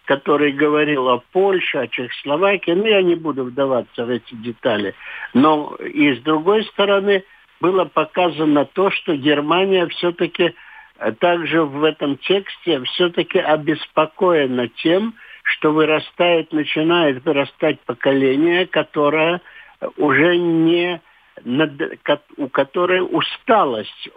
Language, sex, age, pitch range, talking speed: Russian, male, 60-79, 140-180 Hz, 105 wpm